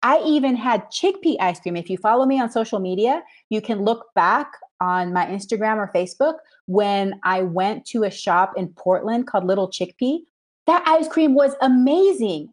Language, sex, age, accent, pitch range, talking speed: English, female, 30-49, American, 180-260 Hz, 180 wpm